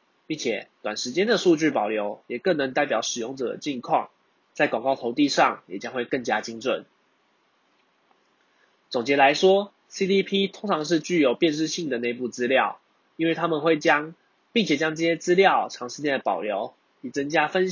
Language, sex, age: Chinese, male, 20-39